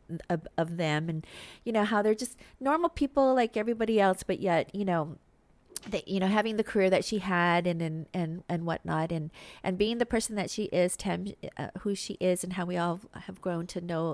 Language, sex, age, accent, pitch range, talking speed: English, female, 40-59, American, 170-225 Hz, 215 wpm